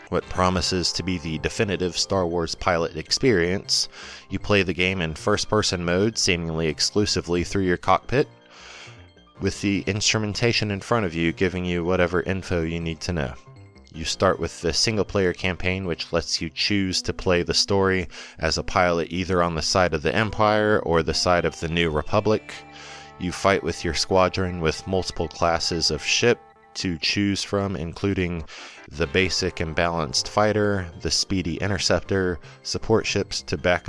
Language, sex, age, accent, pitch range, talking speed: English, male, 20-39, American, 80-95 Hz, 170 wpm